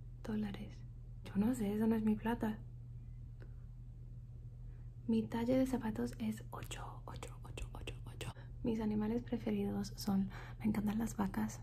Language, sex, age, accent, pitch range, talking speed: English, female, 30-49, Mexican, 120-195 Hz, 135 wpm